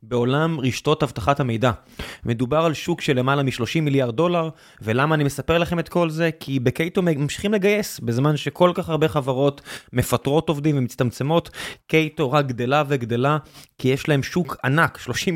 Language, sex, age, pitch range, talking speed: Hebrew, male, 20-39, 120-155 Hz, 160 wpm